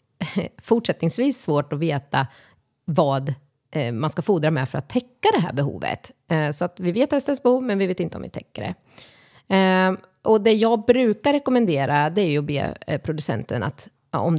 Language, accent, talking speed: Swedish, native, 175 wpm